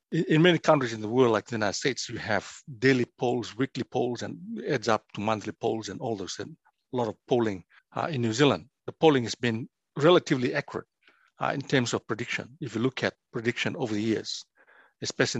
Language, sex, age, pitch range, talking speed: English, male, 60-79, 115-155 Hz, 210 wpm